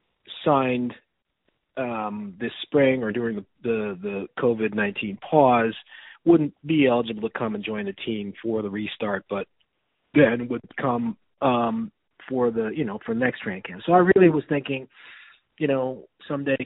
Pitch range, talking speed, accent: 100-130 Hz, 155 wpm, American